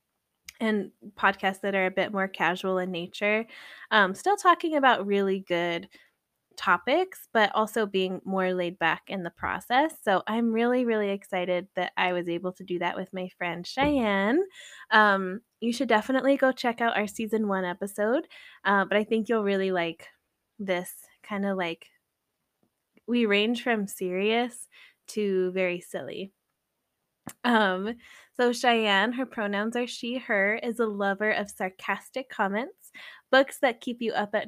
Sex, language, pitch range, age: female, English, 190-245 Hz, 10-29